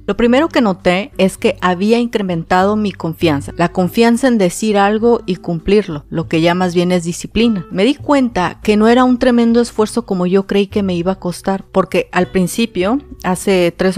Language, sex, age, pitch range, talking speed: Spanish, female, 30-49, 180-230 Hz, 195 wpm